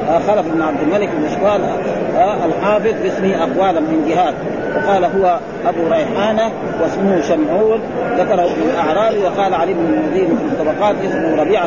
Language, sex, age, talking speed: Arabic, male, 40-59, 145 wpm